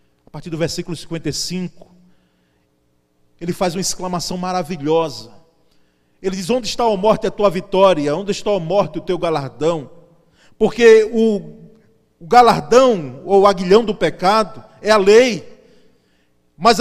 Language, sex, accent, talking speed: Portuguese, male, Brazilian, 135 wpm